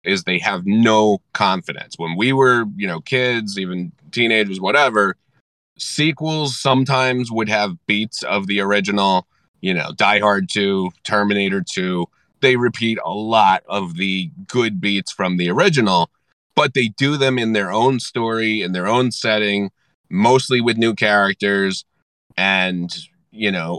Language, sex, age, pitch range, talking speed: English, male, 30-49, 100-130 Hz, 150 wpm